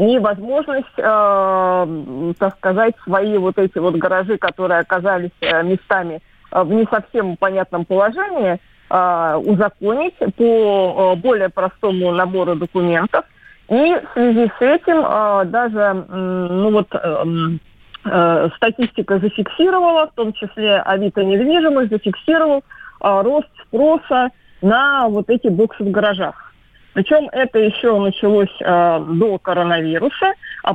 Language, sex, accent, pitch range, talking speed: Russian, female, native, 185-230 Hz, 100 wpm